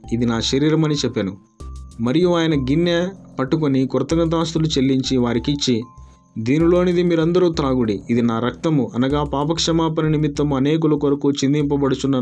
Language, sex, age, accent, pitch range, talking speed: Telugu, male, 20-39, native, 120-150 Hz, 120 wpm